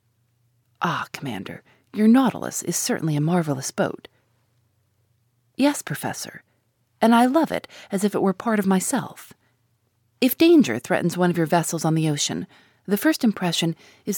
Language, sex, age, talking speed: English, female, 30-49, 150 wpm